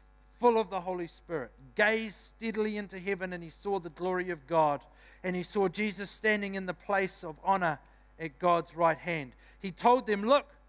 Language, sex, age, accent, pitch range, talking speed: English, male, 50-69, Australian, 170-235 Hz, 190 wpm